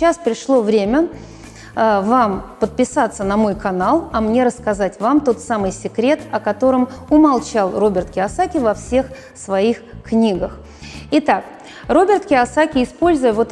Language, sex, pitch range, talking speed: Russian, female, 215-290 Hz, 130 wpm